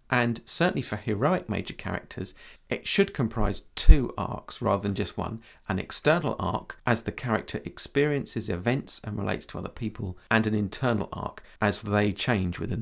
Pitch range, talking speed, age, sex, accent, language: 100-125 Hz, 170 wpm, 50-69, male, British, English